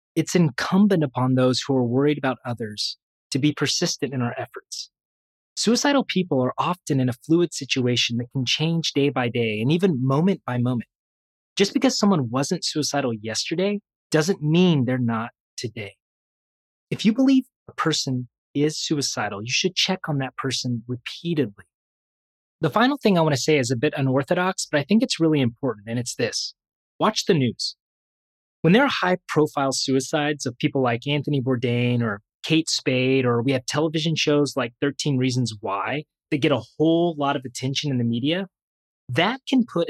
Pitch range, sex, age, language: 125-160 Hz, male, 30-49, English